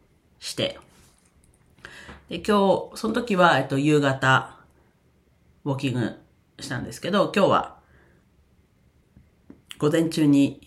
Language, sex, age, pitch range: Japanese, female, 40-59, 115-165 Hz